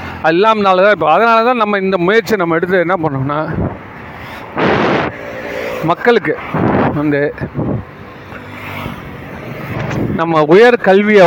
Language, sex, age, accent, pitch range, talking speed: Tamil, male, 40-59, native, 165-215 Hz, 90 wpm